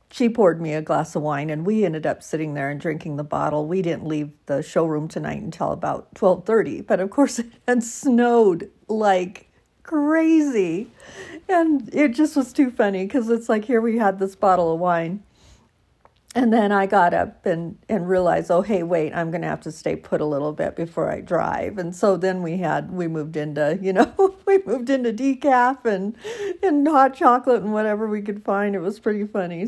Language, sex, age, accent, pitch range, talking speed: English, female, 50-69, American, 165-235 Hz, 205 wpm